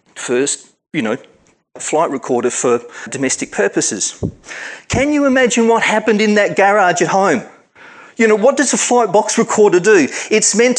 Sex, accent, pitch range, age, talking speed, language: male, Australian, 190-260 Hz, 40-59, 160 wpm, English